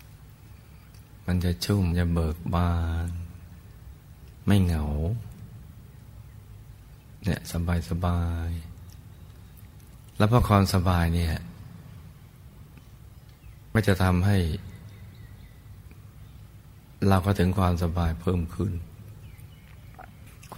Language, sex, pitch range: Thai, male, 85-100 Hz